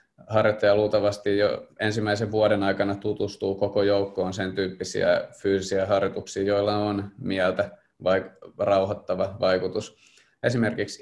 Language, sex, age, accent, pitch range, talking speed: Finnish, male, 20-39, native, 100-110 Hz, 110 wpm